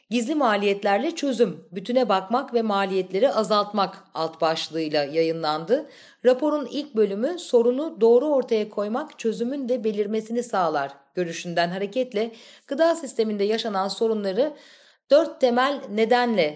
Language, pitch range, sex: Turkish, 190-255 Hz, female